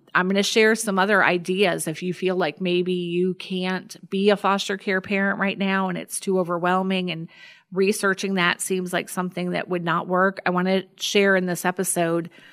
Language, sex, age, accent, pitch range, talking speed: English, female, 40-59, American, 175-200 Hz, 200 wpm